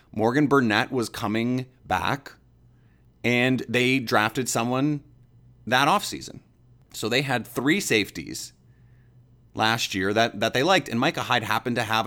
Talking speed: 140 wpm